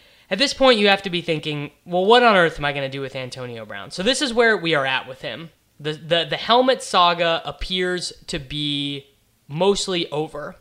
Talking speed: 220 wpm